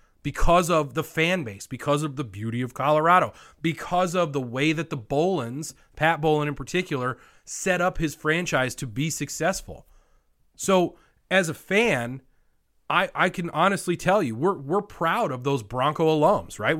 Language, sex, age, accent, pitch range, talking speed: English, male, 30-49, American, 140-220 Hz, 170 wpm